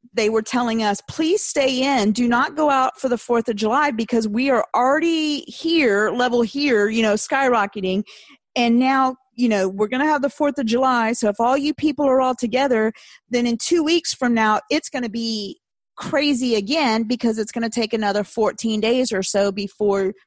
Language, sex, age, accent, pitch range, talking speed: English, female, 40-59, American, 220-270 Hz, 205 wpm